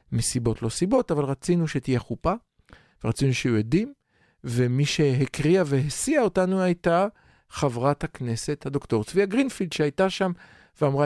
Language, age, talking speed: Hebrew, 50-69, 125 wpm